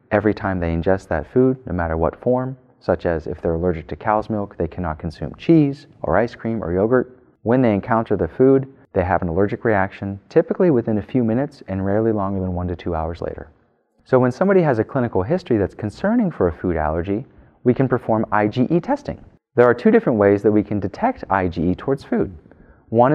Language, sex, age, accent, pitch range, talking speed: English, male, 30-49, American, 90-125 Hz, 215 wpm